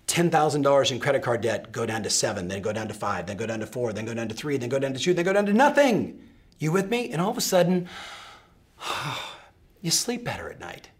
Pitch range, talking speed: 160-235 Hz, 255 wpm